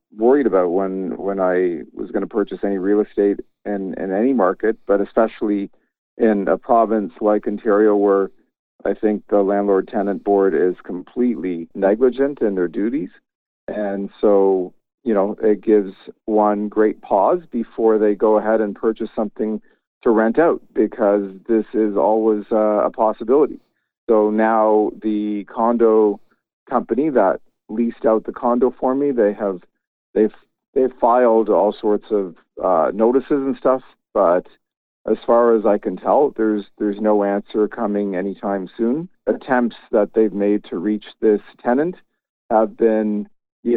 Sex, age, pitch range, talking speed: male, 50-69, 100-115 Hz, 150 wpm